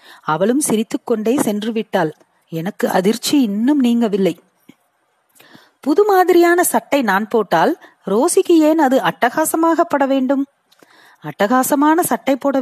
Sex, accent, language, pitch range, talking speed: female, native, Tamil, 205-290 Hz, 95 wpm